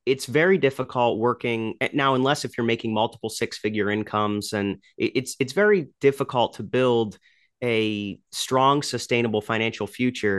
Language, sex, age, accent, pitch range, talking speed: English, male, 30-49, American, 105-135 Hz, 145 wpm